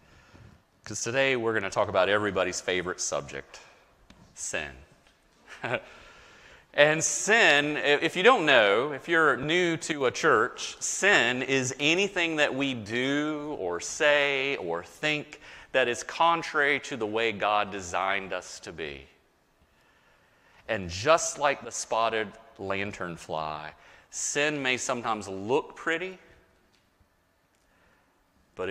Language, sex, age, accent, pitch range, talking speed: English, male, 30-49, American, 100-150 Hz, 120 wpm